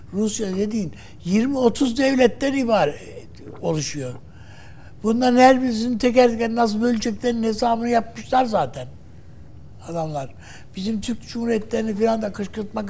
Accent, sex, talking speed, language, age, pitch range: native, male, 100 wpm, Turkish, 60-79, 165-235 Hz